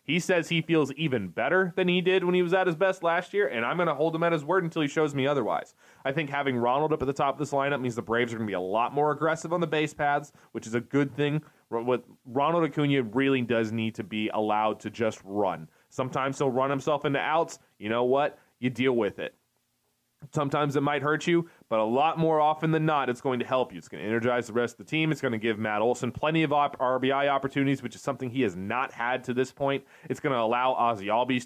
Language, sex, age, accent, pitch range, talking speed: English, male, 20-39, American, 115-150 Hz, 265 wpm